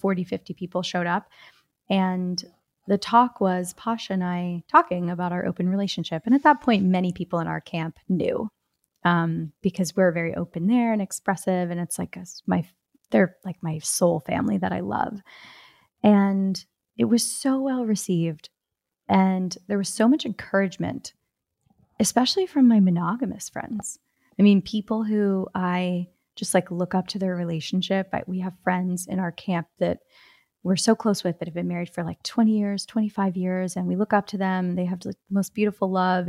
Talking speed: 180 wpm